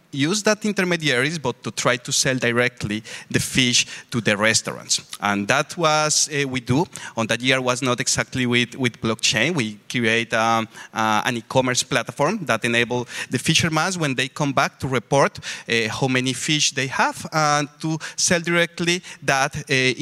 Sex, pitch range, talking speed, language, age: male, 125-155 Hz, 175 wpm, German, 30-49